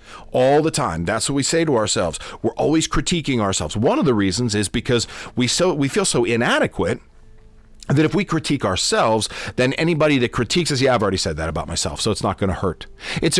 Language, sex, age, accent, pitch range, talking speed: English, male, 40-59, American, 100-155 Hz, 220 wpm